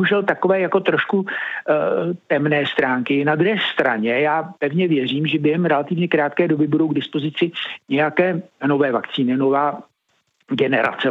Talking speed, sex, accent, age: 135 wpm, male, native, 60-79